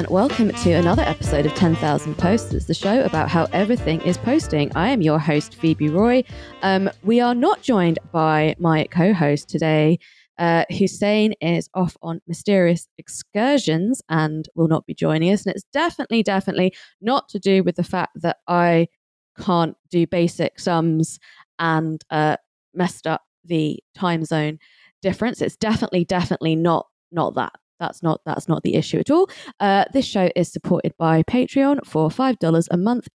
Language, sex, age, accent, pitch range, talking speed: English, female, 20-39, British, 160-215 Hz, 170 wpm